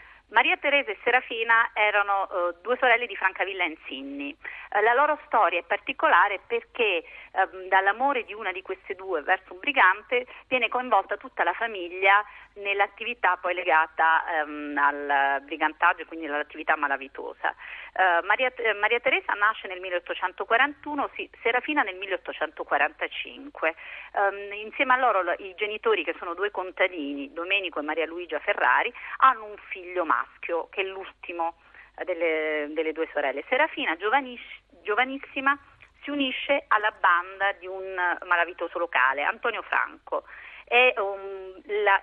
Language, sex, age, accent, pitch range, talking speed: Italian, female, 40-59, native, 175-255 Hz, 130 wpm